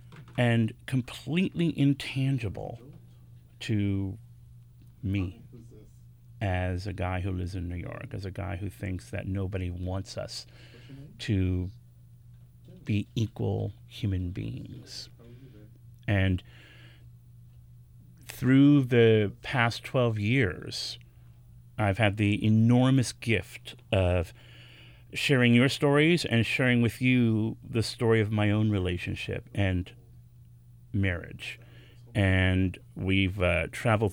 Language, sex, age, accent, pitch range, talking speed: English, male, 40-59, American, 105-120 Hz, 100 wpm